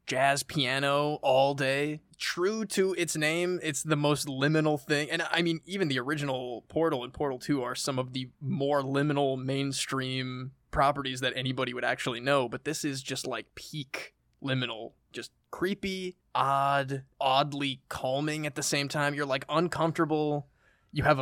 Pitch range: 130-155 Hz